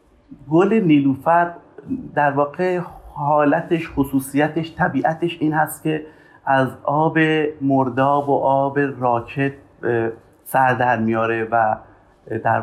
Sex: male